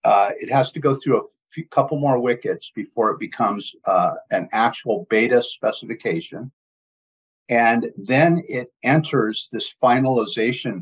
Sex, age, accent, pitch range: male, 50-69, American, 110-140 Hz